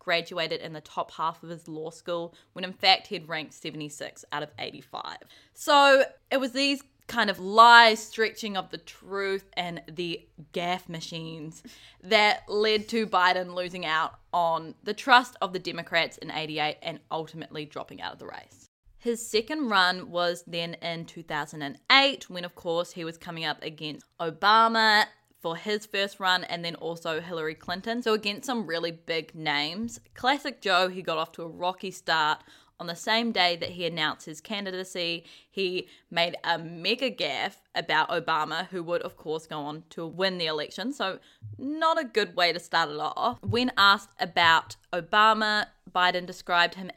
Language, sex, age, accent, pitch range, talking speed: English, female, 20-39, Australian, 165-210 Hz, 175 wpm